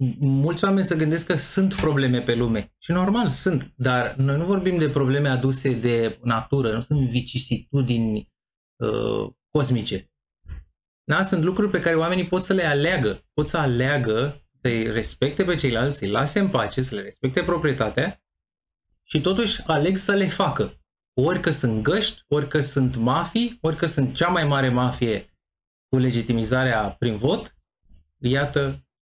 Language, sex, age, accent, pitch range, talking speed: Romanian, male, 20-39, native, 115-160 Hz, 150 wpm